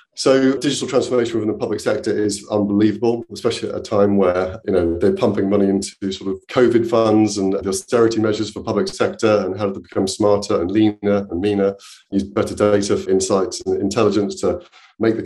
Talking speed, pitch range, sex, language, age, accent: 195 wpm, 100-125 Hz, male, English, 30-49, British